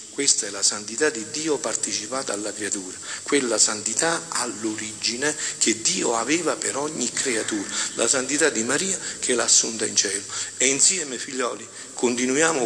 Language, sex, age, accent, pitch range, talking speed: Italian, male, 50-69, native, 125-190 Hz, 145 wpm